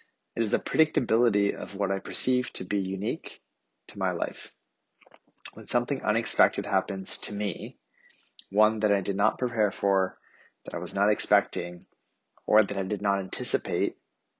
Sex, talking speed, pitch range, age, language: male, 160 wpm, 100-120 Hz, 30-49, English